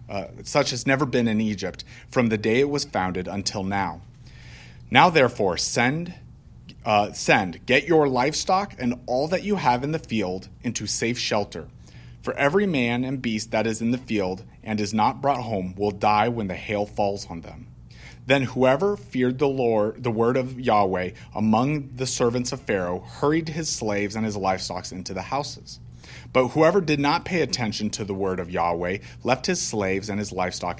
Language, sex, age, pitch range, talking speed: English, male, 30-49, 100-130 Hz, 190 wpm